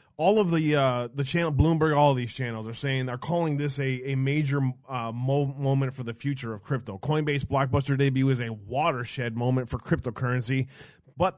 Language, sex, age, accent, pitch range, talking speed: English, male, 20-39, American, 120-150 Hz, 200 wpm